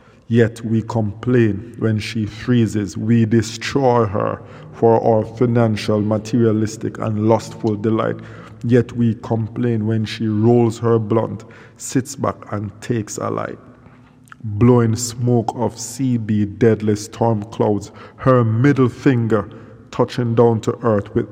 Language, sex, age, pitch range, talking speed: English, male, 50-69, 110-125 Hz, 125 wpm